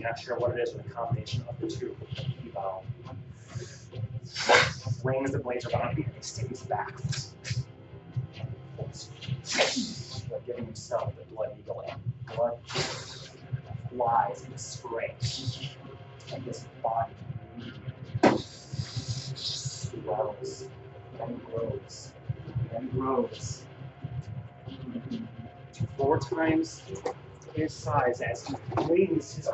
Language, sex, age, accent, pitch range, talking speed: English, male, 30-49, American, 120-130 Hz, 110 wpm